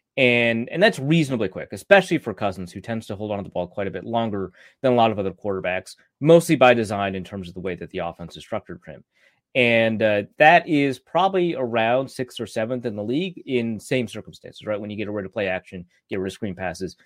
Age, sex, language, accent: 30-49, male, English, American